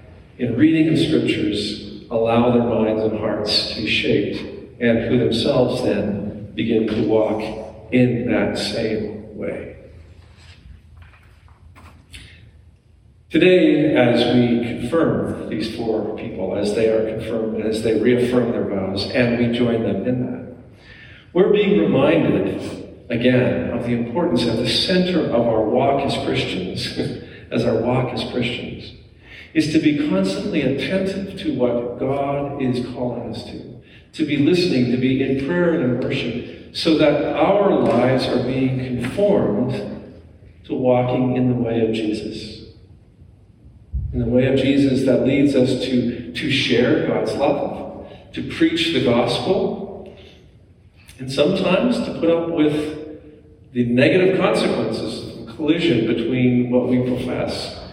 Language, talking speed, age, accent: English, 140 wpm, 50-69, American